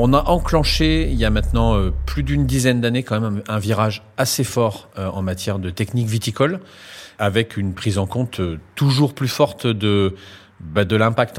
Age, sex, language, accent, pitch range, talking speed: 40-59, male, French, French, 95-120 Hz, 175 wpm